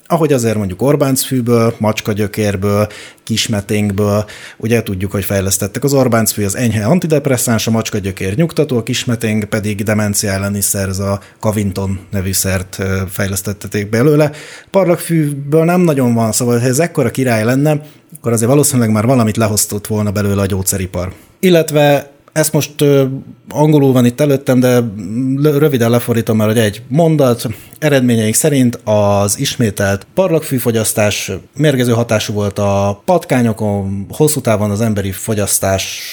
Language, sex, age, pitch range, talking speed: Hungarian, male, 30-49, 105-135 Hz, 130 wpm